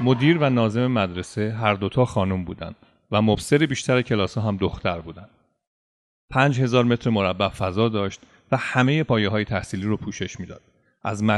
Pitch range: 100-125 Hz